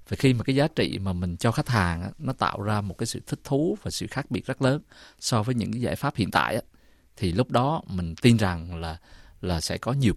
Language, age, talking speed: Vietnamese, 20-39, 270 wpm